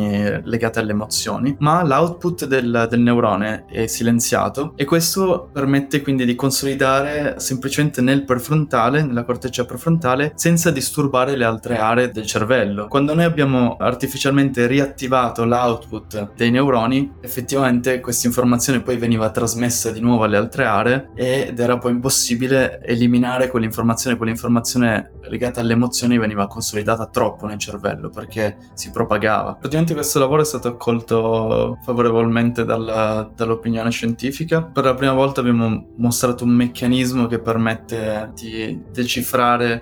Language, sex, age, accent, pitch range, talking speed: Italian, male, 20-39, native, 115-130 Hz, 130 wpm